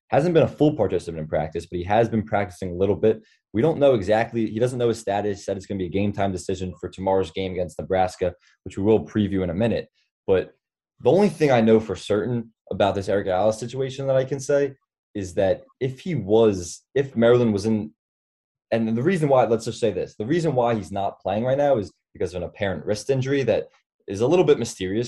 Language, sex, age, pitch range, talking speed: English, male, 20-39, 95-125 Hz, 235 wpm